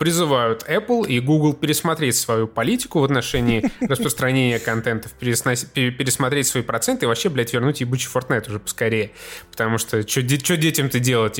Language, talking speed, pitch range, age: Russian, 145 wpm, 115-150 Hz, 20-39